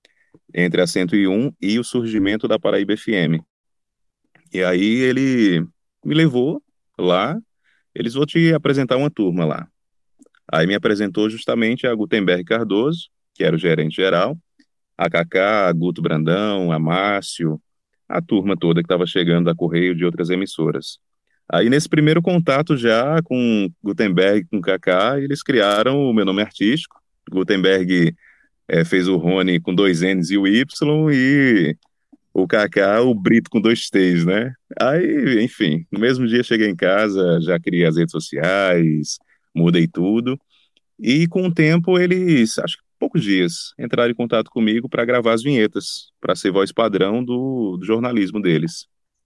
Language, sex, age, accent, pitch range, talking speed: Portuguese, male, 30-49, Brazilian, 90-125 Hz, 155 wpm